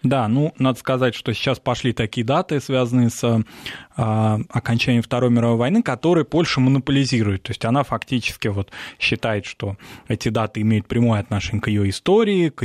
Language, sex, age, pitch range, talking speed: Russian, male, 20-39, 115-145 Hz, 165 wpm